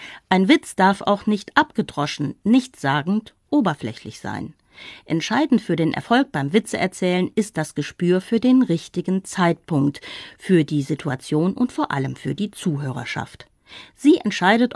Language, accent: English, German